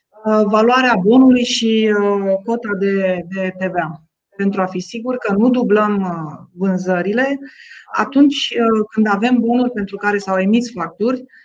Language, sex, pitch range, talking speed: Romanian, female, 195-250 Hz, 120 wpm